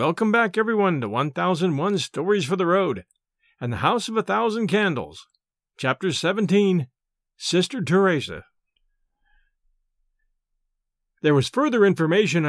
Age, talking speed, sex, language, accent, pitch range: 50-69, 115 wpm, male, English, American, 155-210 Hz